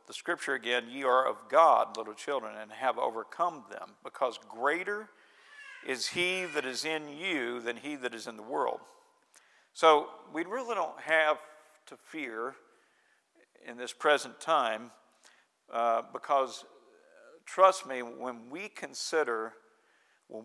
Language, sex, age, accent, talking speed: English, male, 50-69, American, 130 wpm